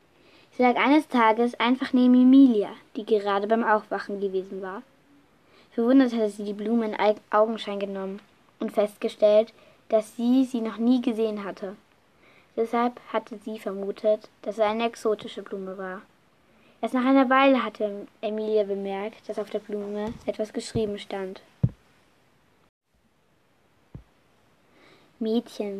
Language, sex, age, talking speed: German, female, 20-39, 130 wpm